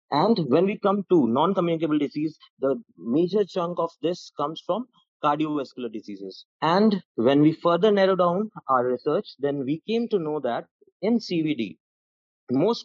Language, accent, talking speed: English, Indian, 155 wpm